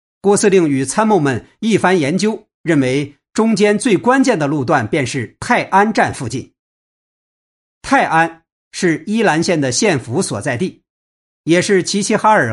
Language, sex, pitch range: Chinese, male, 140-200 Hz